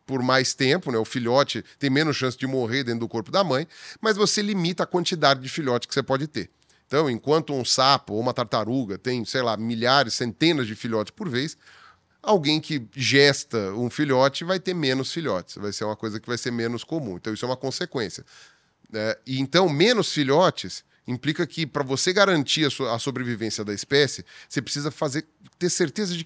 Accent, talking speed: Brazilian, 200 wpm